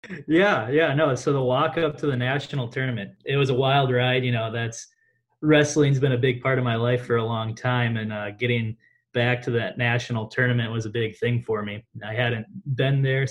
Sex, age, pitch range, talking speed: male, 20-39, 110-130 Hz, 220 wpm